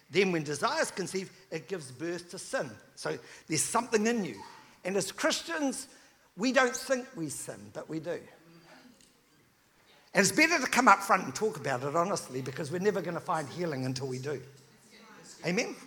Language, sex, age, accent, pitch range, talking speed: English, male, 60-79, British, 155-205 Hz, 180 wpm